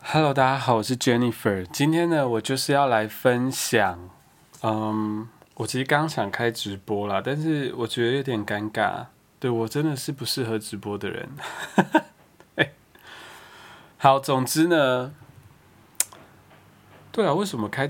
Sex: male